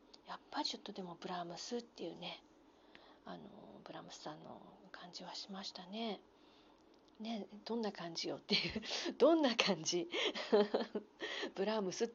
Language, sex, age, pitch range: Japanese, female, 40-59, 195-305 Hz